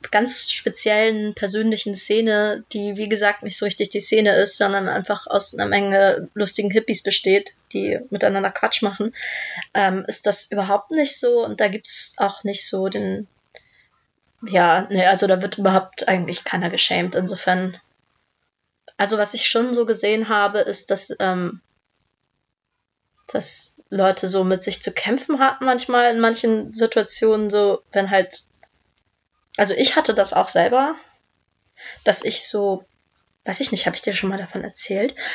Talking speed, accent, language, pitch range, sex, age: 155 wpm, German, German, 195-230 Hz, female, 20-39